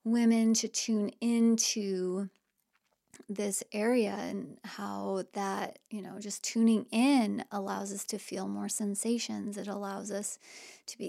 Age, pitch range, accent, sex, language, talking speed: 20-39, 195-230 Hz, American, female, English, 135 wpm